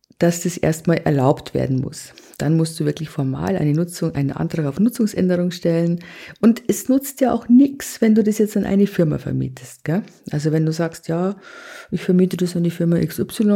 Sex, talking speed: female, 200 wpm